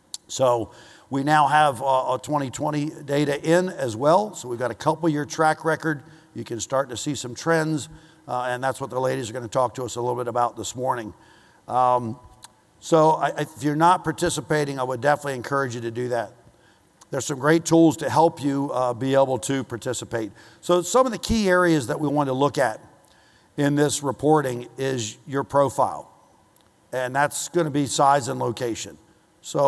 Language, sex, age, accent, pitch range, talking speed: English, male, 50-69, American, 125-150 Hz, 190 wpm